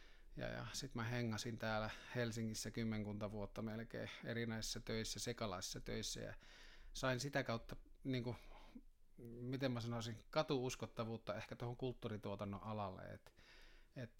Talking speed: 125 wpm